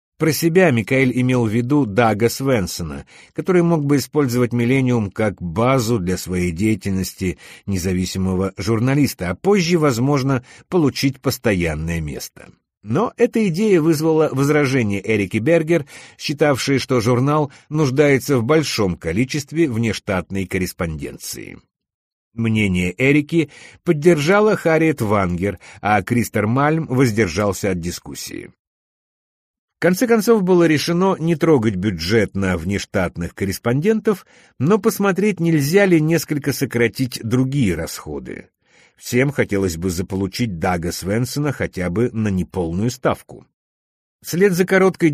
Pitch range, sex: 100-155 Hz, male